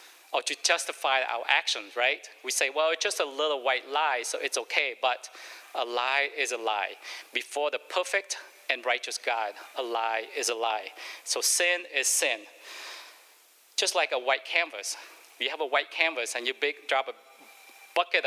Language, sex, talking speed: English, male, 180 wpm